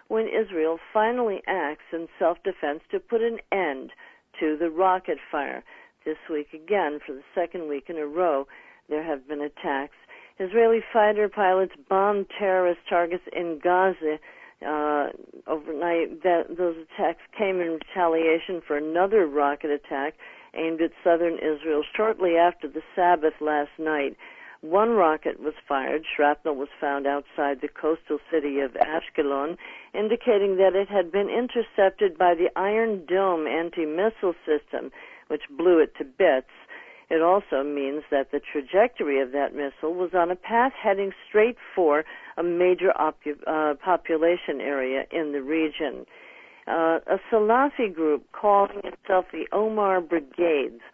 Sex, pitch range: female, 150-195 Hz